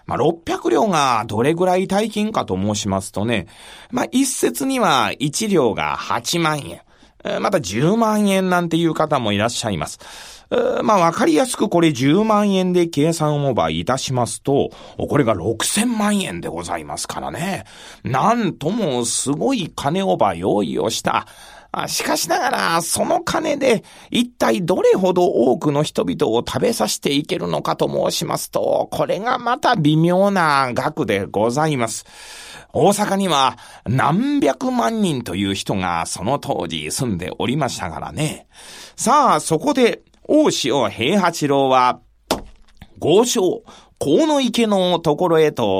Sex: male